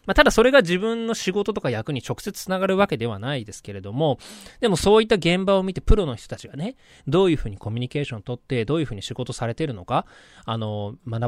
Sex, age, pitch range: male, 20-39, 110-155 Hz